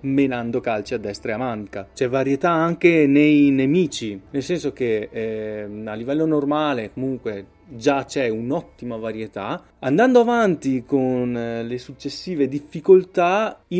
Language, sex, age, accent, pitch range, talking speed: Italian, male, 30-49, native, 115-155 Hz, 140 wpm